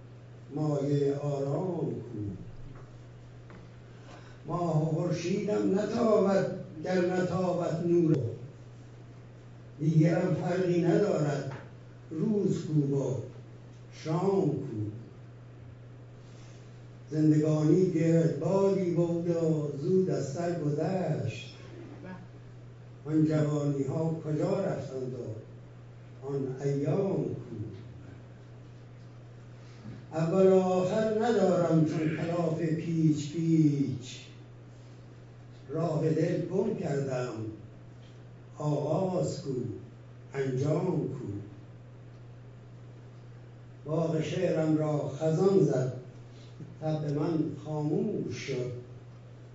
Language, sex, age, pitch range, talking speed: Persian, male, 60-79, 120-160 Hz, 75 wpm